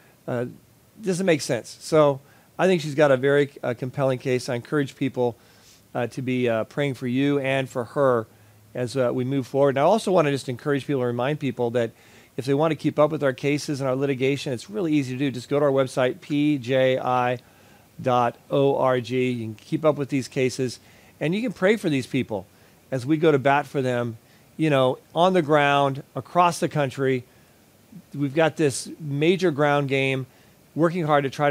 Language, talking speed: English, 200 wpm